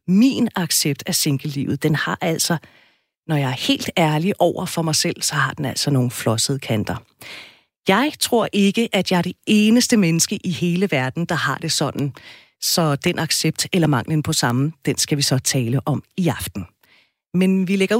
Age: 40-59